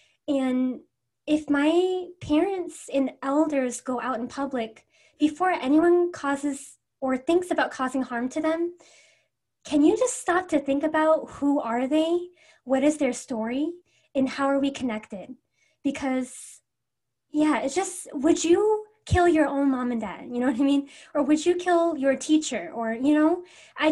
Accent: American